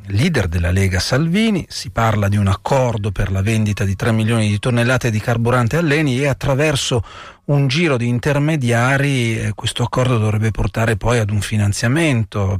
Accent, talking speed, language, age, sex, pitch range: native, 170 wpm, Italian, 40-59, male, 105-140 Hz